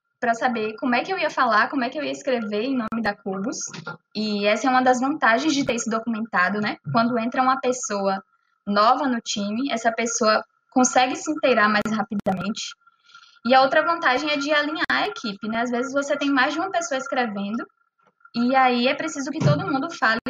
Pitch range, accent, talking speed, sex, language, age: 230-310 Hz, Brazilian, 205 wpm, female, Portuguese, 10-29